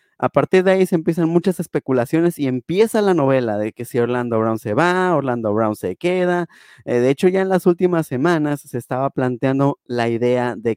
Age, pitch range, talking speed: 30-49, 120-160 Hz, 205 wpm